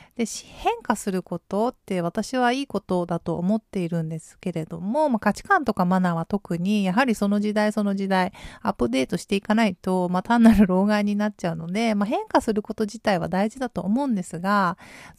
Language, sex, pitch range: Japanese, female, 185-260 Hz